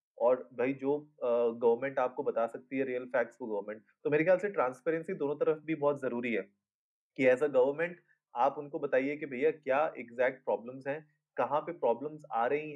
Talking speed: 195 wpm